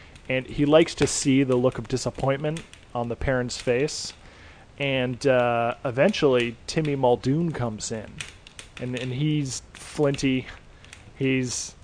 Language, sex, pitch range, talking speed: English, male, 115-140 Hz, 125 wpm